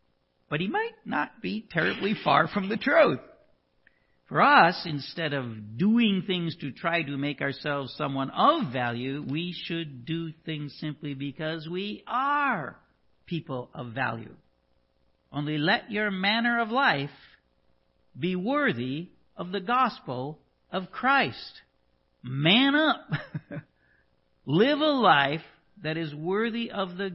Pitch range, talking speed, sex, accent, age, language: 125-190 Hz, 130 wpm, male, American, 50-69, English